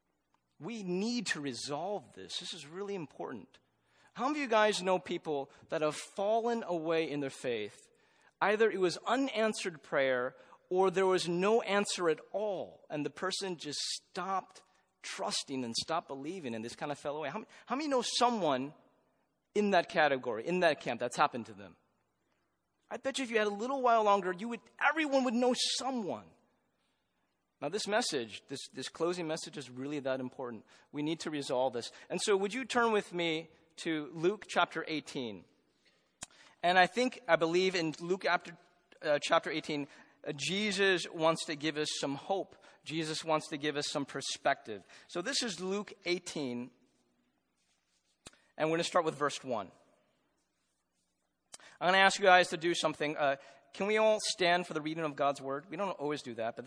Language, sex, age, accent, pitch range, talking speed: English, male, 30-49, American, 150-205 Hz, 185 wpm